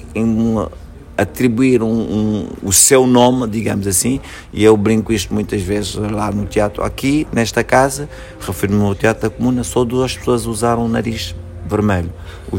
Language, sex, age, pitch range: Portuguese, male, 50-69, 100-125 Hz